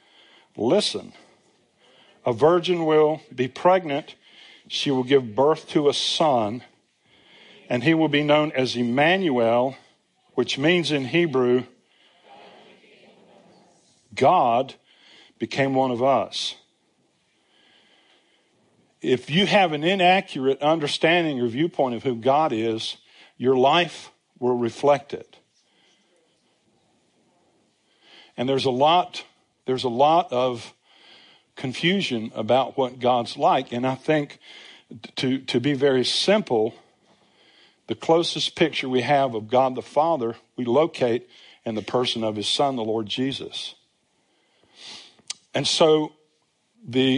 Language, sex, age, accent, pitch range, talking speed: English, male, 60-79, American, 125-155 Hz, 115 wpm